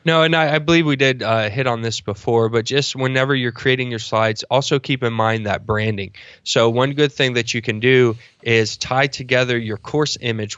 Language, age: English, 20-39